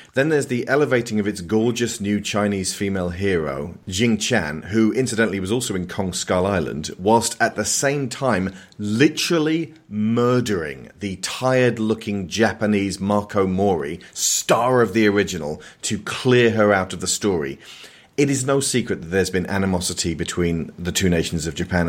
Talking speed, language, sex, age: 160 wpm, English, male, 30-49